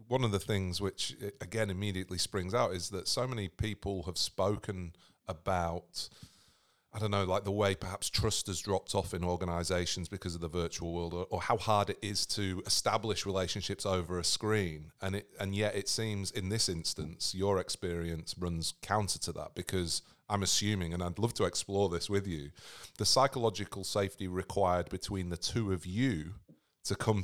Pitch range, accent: 90-105 Hz, British